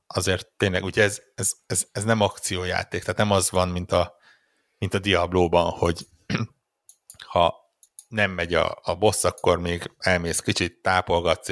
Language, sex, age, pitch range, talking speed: Hungarian, male, 60-79, 90-105 Hz, 150 wpm